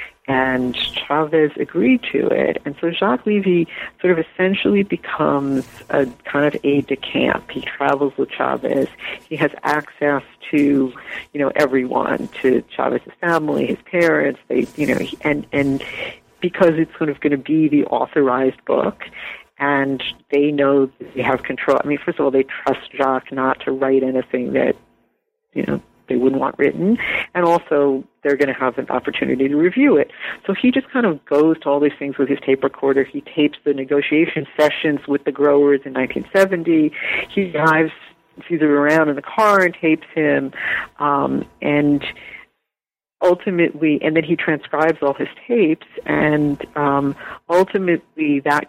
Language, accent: English, American